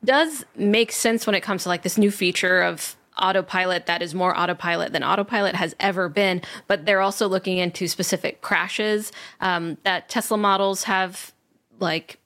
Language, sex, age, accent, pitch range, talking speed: English, female, 20-39, American, 185-230 Hz, 170 wpm